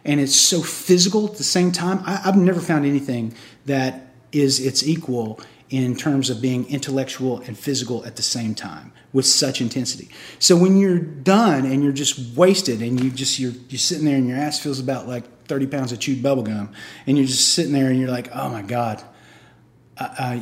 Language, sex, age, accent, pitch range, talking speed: English, male, 30-49, American, 130-175 Hz, 205 wpm